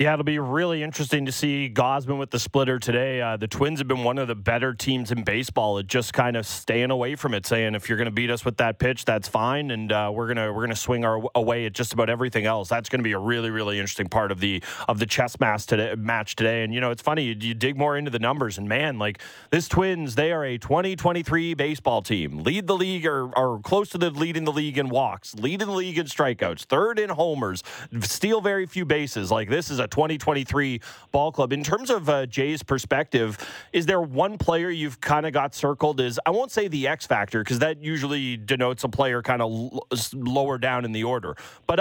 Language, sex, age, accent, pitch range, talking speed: English, male, 30-49, American, 115-145 Hz, 240 wpm